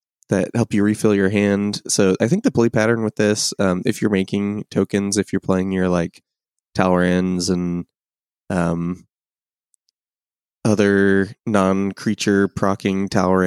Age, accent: 20-39, American